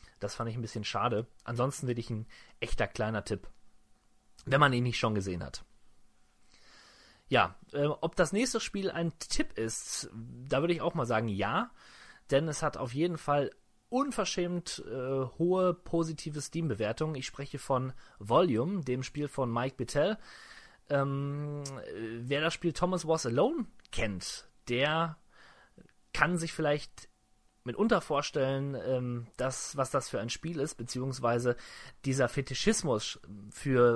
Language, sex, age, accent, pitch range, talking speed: German, male, 30-49, German, 115-160 Hz, 145 wpm